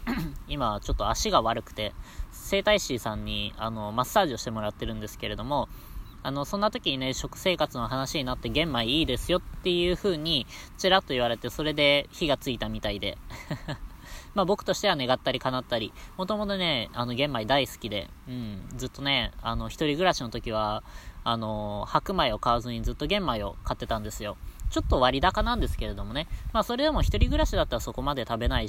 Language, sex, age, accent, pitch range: Japanese, female, 20-39, native, 105-145 Hz